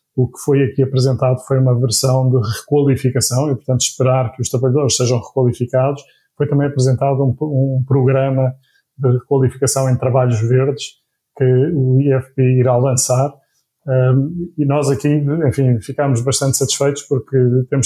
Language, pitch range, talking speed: Portuguese, 125-140 Hz, 150 wpm